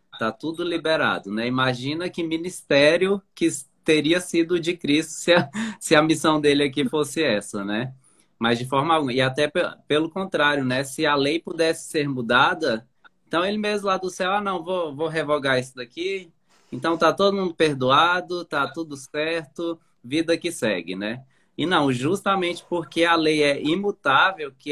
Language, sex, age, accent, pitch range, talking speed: Portuguese, male, 20-39, Brazilian, 115-165 Hz, 175 wpm